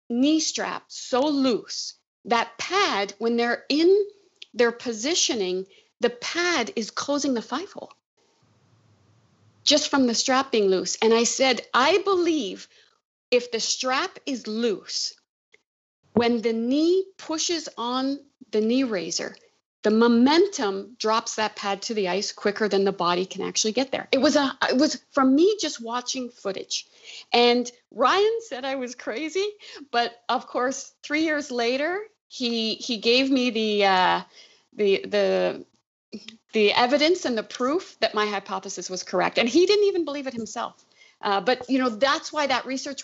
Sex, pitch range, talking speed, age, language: female, 225-305 Hz, 160 wpm, 50-69, English